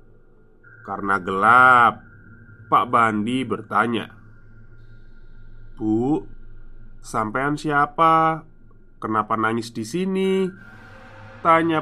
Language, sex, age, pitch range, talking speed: Indonesian, male, 20-39, 105-130 Hz, 65 wpm